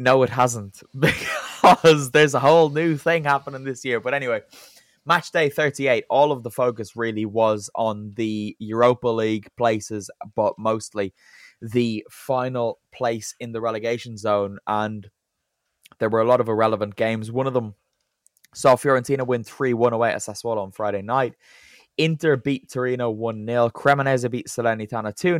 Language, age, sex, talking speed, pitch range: English, 10-29, male, 160 wpm, 110-135 Hz